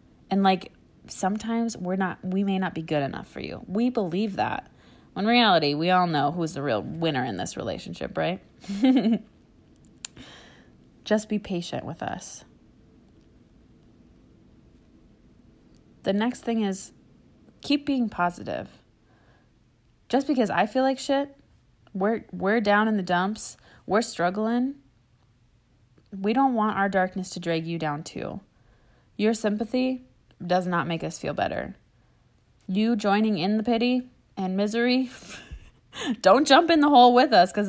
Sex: female